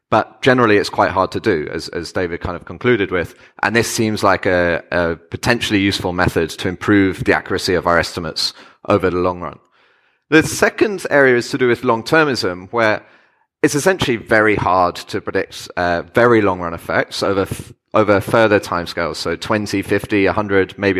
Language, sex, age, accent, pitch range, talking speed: English, male, 30-49, British, 95-115 Hz, 185 wpm